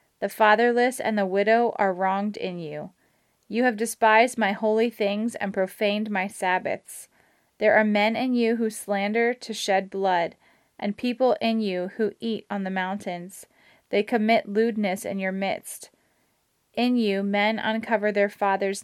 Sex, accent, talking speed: female, American, 160 wpm